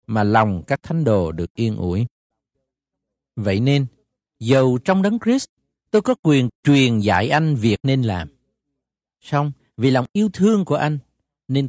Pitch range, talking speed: 105-155 Hz, 160 wpm